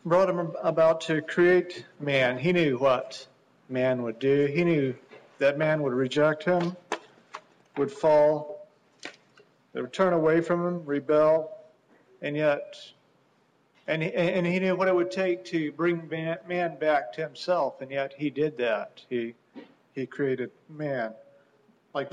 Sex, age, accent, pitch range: male, 50-69, American, 135-175 Hz